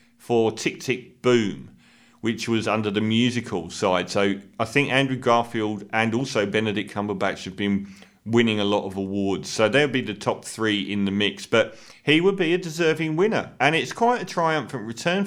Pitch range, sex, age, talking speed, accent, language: 105-150 Hz, male, 40-59, 190 wpm, British, English